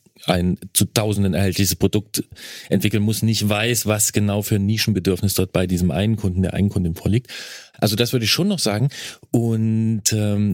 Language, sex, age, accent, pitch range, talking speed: German, male, 40-59, German, 105-140 Hz, 175 wpm